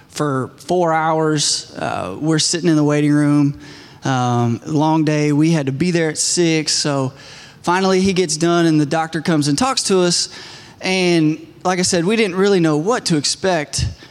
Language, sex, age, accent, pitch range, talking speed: English, male, 20-39, American, 140-170 Hz, 185 wpm